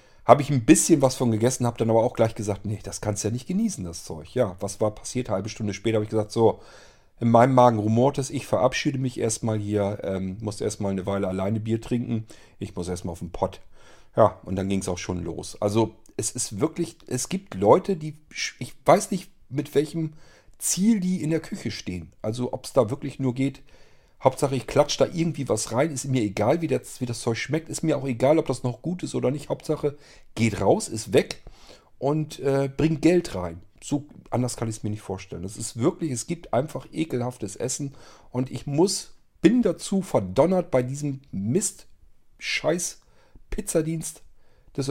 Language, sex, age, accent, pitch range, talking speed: German, male, 40-59, German, 105-145 Hz, 210 wpm